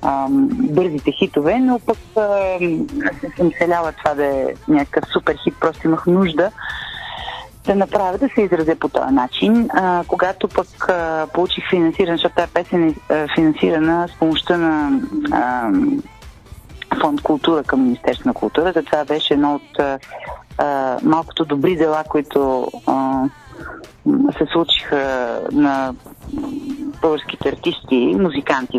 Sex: female